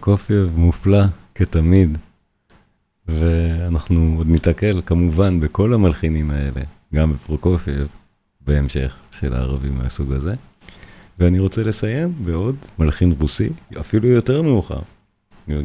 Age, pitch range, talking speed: 40-59, 80-100 Hz, 100 wpm